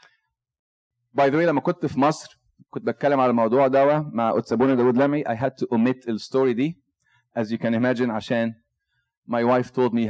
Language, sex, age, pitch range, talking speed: Arabic, male, 30-49, 125-185 Hz, 135 wpm